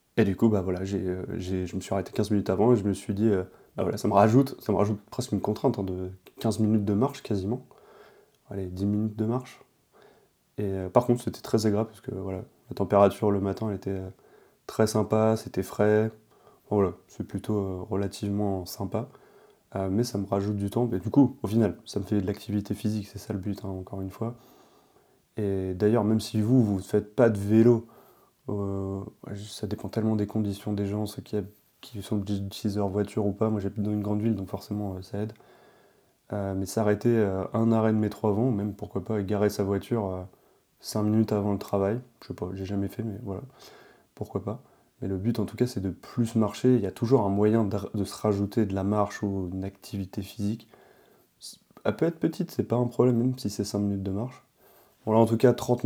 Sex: male